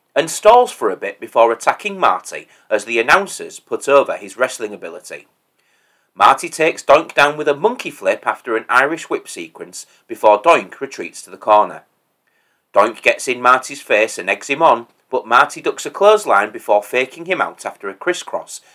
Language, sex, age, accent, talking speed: English, male, 30-49, British, 180 wpm